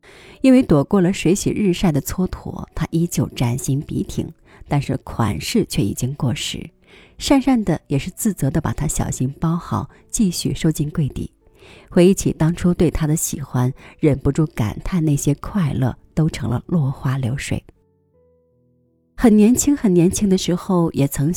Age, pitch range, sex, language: 30-49, 130-175 Hz, female, Chinese